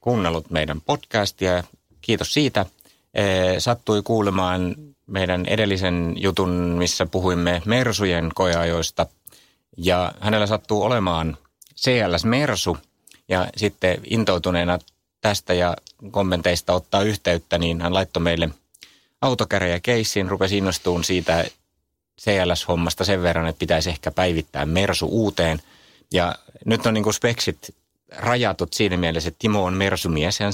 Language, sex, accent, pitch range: Finnish, male, native, 85-100 Hz